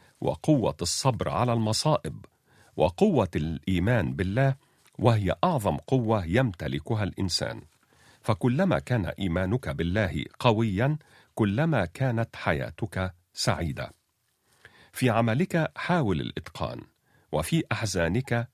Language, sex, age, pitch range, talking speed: Arabic, male, 50-69, 95-130 Hz, 85 wpm